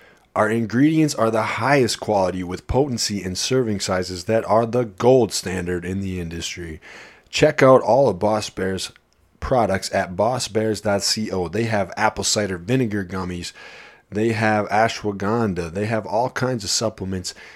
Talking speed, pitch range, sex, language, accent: 145 wpm, 95-115 Hz, male, English, American